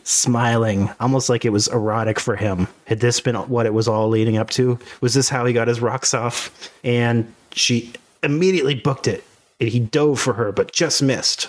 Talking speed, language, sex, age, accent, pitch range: 205 wpm, English, male, 30-49, American, 115-135 Hz